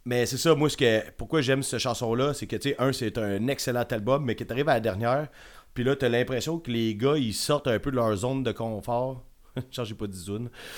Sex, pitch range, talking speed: male, 110-130 Hz, 255 wpm